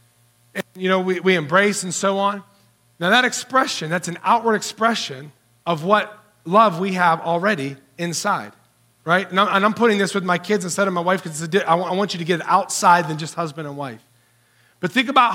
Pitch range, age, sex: 155-220 Hz, 40-59, male